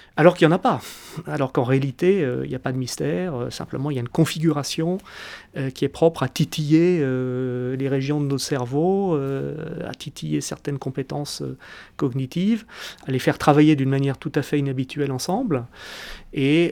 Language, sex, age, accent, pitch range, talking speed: French, male, 30-49, French, 135-165 Hz, 195 wpm